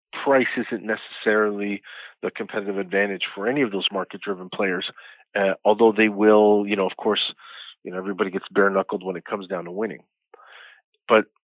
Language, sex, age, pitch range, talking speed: English, male, 40-59, 95-110 Hz, 170 wpm